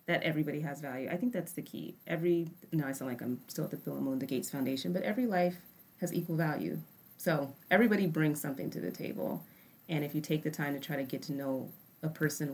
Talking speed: 240 wpm